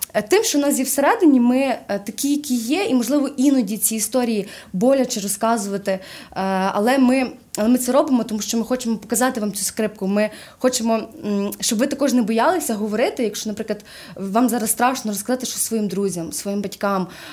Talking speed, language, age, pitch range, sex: 175 wpm, Ukrainian, 20-39, 200-255 Hz, female